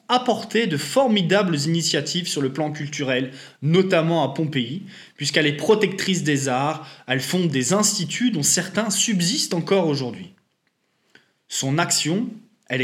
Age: 20-39